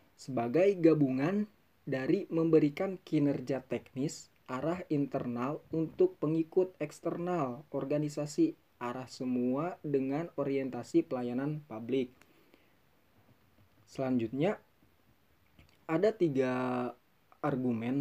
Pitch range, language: 130-160 Hz, Indonesian